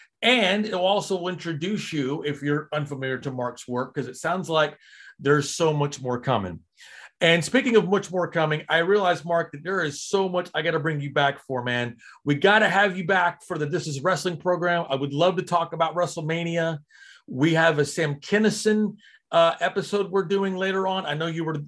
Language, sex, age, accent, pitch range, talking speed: English, male, 40-59, American, 145-185 Hz, 210 wpm